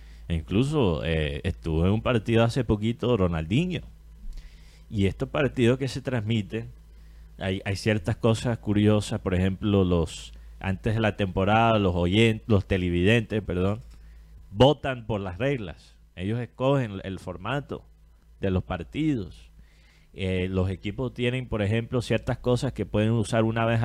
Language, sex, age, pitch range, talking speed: Spanish, male, 30-49, 85-120 Hz, 145 wpm